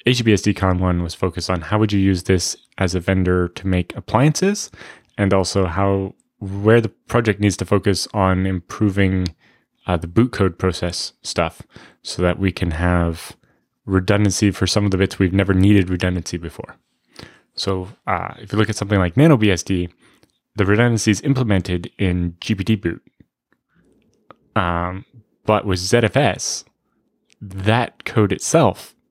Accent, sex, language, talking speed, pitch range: American, male, English, 150 wpm, 90-105 Hz